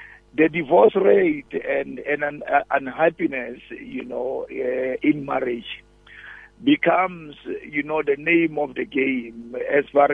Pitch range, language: 130-170 Hz, English